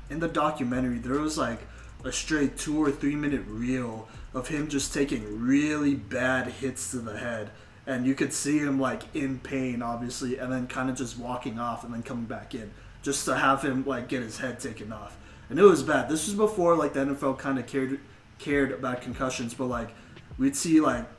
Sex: male